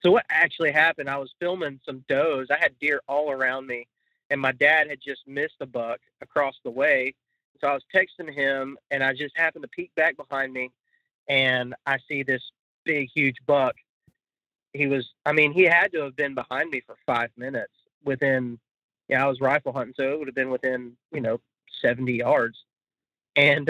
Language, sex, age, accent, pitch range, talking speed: English, male, 30-49, American, 130-150 Hz, 200 wpm